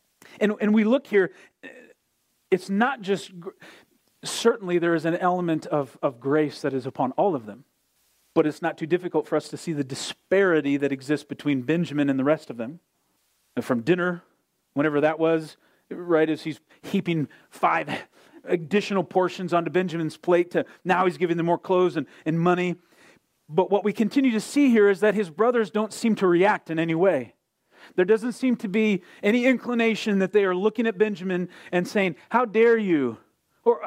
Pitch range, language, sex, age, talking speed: 170-220 Hz, English, male, 40-59, 185 wpm